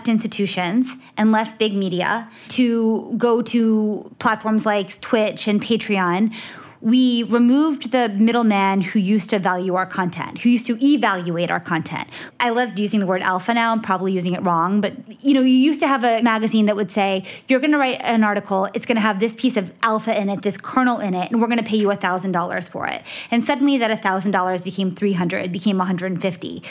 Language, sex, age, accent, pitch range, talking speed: English, female, 20-39, American, 195-245 Hz, 205 wpm